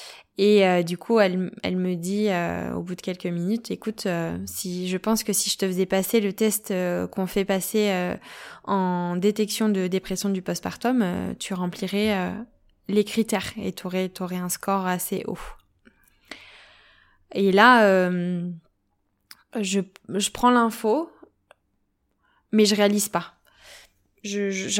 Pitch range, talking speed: 185-215 Hz, 155 wpm